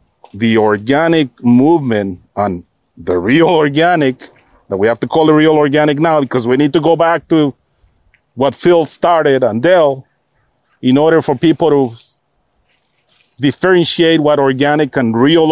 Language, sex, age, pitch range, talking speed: English, male, 40-59, 125-155 Hz, 145 wpm